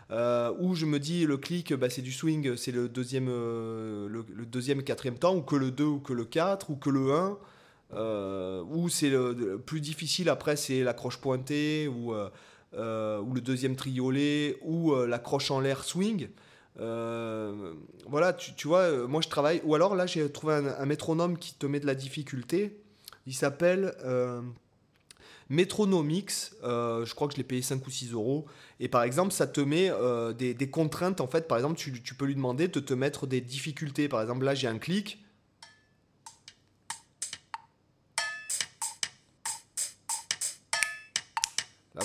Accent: French